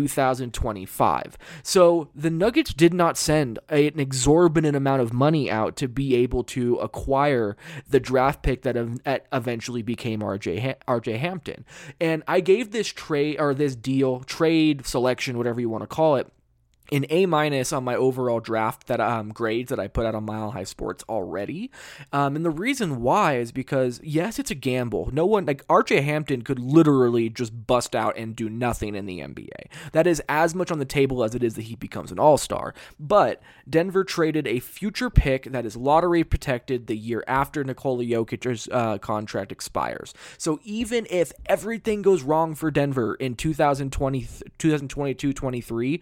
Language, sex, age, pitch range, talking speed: English, male, 20-39, 120-155 Hz, 170 wpm